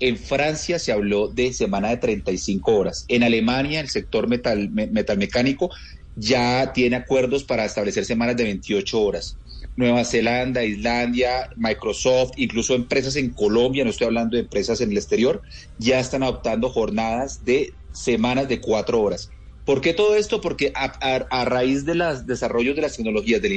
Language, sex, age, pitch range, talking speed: Spanish, male, 30-49, 110-130 Hz, 170 wpm